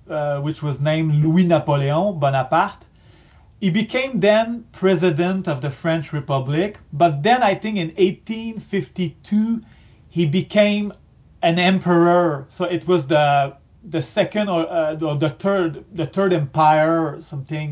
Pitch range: 150-200 Hz